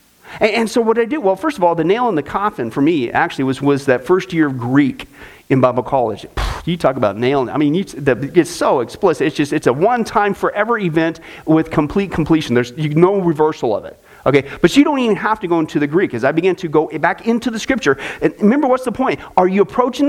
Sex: male